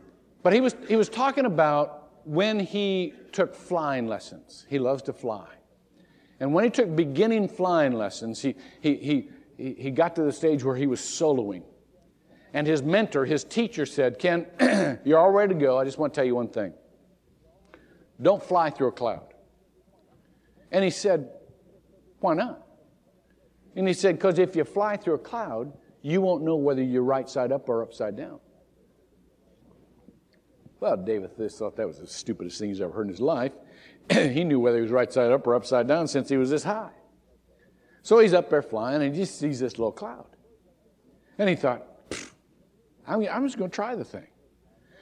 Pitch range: 135-190 Hz